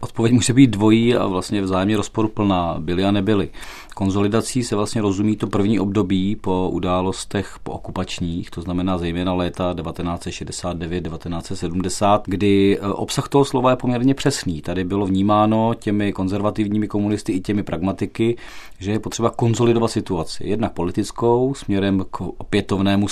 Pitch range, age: 90-105 Hz, 40-59